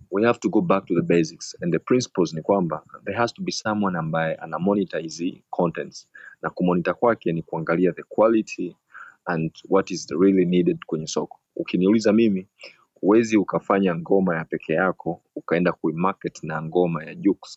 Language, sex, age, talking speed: Swahili, male, 30-49, 170 wpm